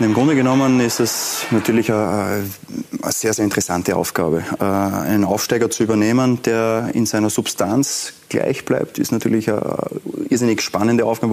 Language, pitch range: German, 110-125 Hz